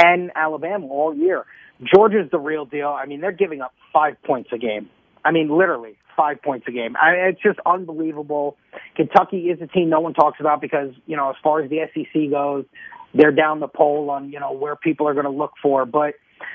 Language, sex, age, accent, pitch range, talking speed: English, male, 30-49, American, 150-200 Hz, 220 wpm